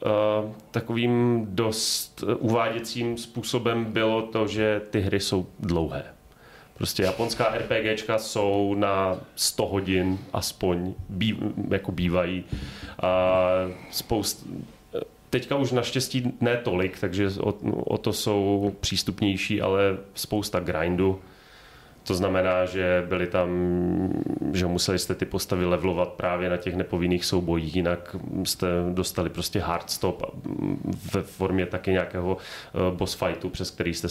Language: Czech